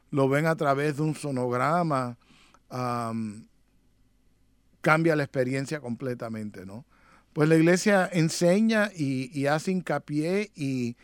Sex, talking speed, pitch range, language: male, 120 wpm, 130-160 Hz, English